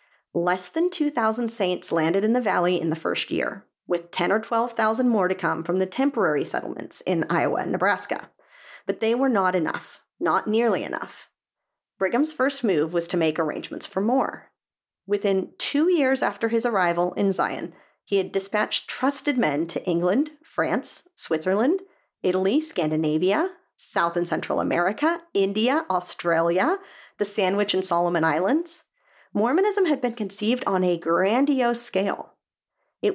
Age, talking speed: 40-59, 150 wpm